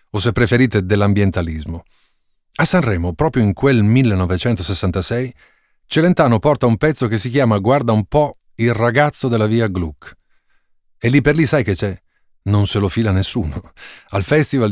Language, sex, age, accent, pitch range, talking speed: Italian, male, 40-59, native, 95-130 Hz, 160 wpm